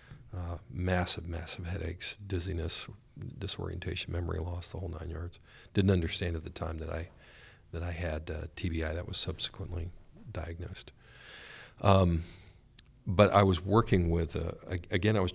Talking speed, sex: 150 wpm, male